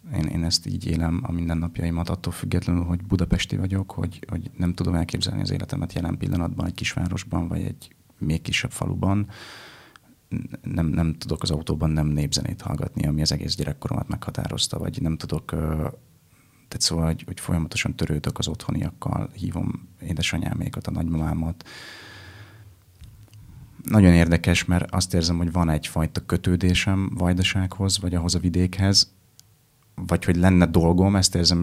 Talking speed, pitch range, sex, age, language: 145 wpm, 85-95 Hz, male, 30-49, Hungarian